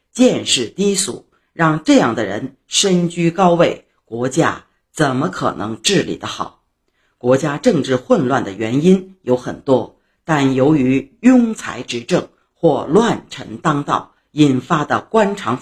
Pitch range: 130-195 Hz